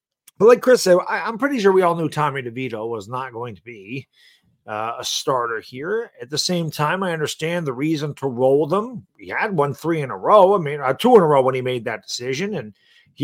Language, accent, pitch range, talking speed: English, American, 135-185 Hz, 245 wpm